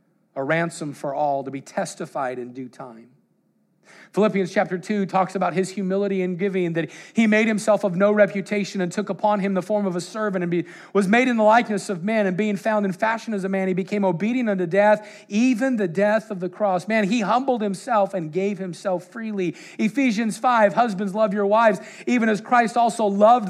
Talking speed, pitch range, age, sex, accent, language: 210 wpm, 180-230 Hz, 40-59, male, American, English